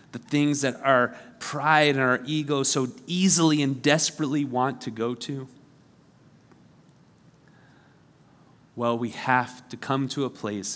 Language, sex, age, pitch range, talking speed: English, male, 30-49, 120-160 Hz, 135 wpm